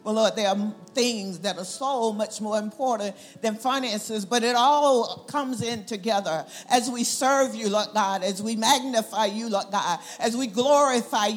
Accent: American